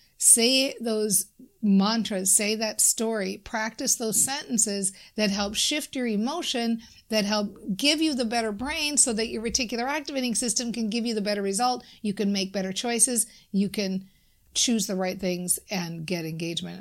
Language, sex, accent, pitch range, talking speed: English, female, American, 185-215 Hz, 170 wpm